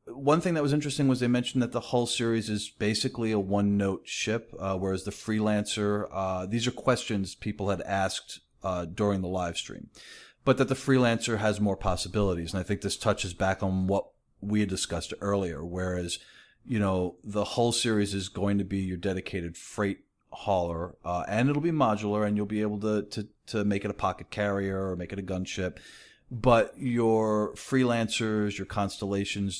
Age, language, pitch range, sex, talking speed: 40-59, English, 90-110 Hz, male, 185 wpm